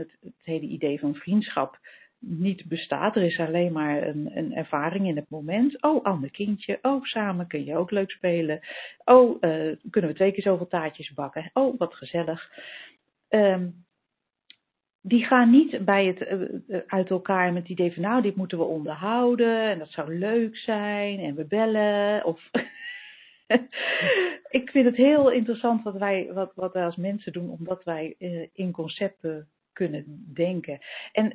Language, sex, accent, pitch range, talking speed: Dutch, female, Dutch, 160-205 Hz, 155 wpm